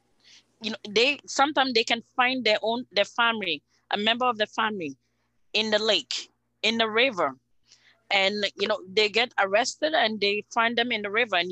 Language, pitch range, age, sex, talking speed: English, 185-230 Hz, 20-39, female, 190 wpm